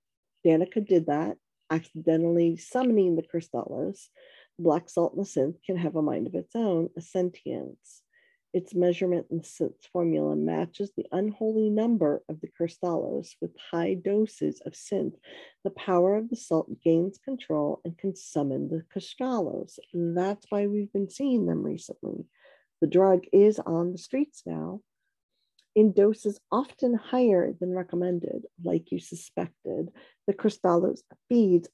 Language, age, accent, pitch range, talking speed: English, 50-69, American, 165-215 Hz, 145 wpm